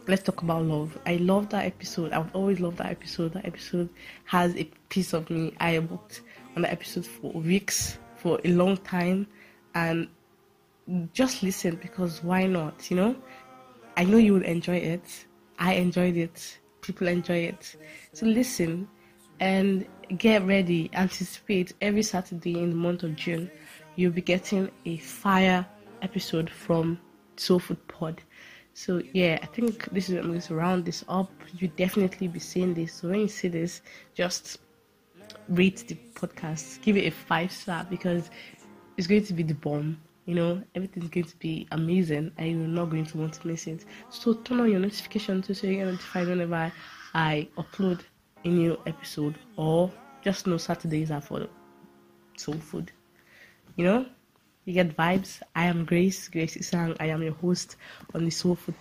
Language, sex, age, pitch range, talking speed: English, female, 20-39, 165-190 Hz, 175 wpm